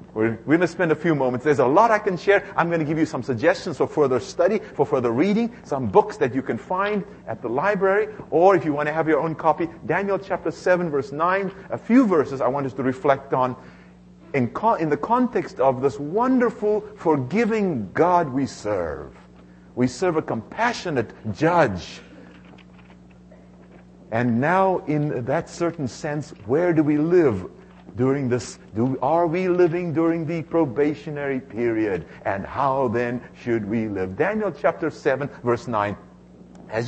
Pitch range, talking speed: 125-185 Hz, 175 wpm